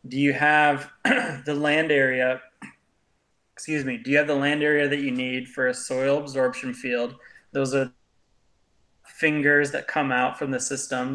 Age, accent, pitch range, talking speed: 20-39, American, 130-150 Hz, 165 wpm